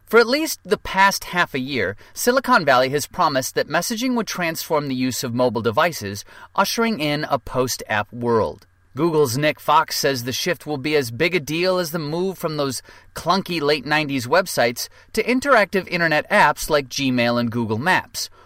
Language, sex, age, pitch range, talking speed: English, male, 30-49, 125-180 Hz, 180 wpm